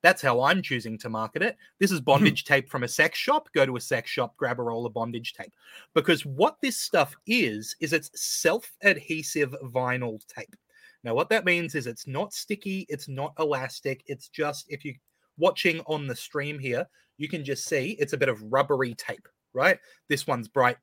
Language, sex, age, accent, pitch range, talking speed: English, male, 30-49, Australian, 125-185 Hz, 200 wpm